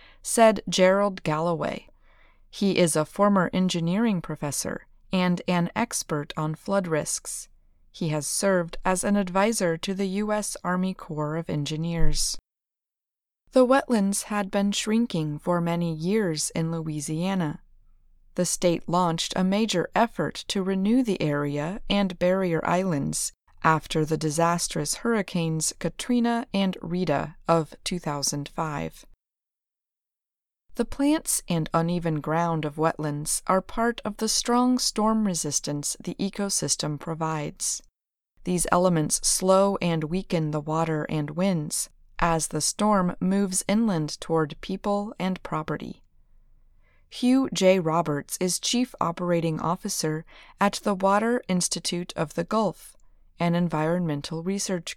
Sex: female